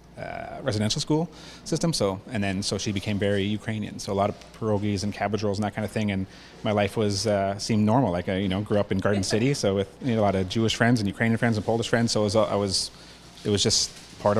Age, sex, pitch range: 30-49, male, 95-110 Hz